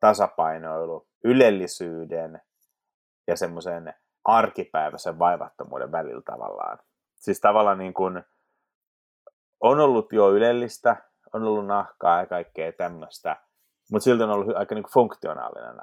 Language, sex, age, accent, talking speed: Finnish, male, 30-49, native, 105 wpm